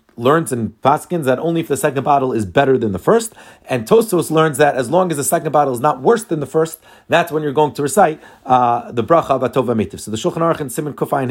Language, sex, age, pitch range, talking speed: English, male, 30-49, 130-165 Hz, 245 wpm